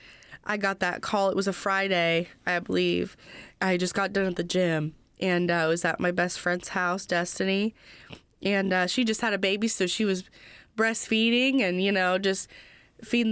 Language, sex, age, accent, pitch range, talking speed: English, female, 20-39, American, 180-215 Hz, 190 wpm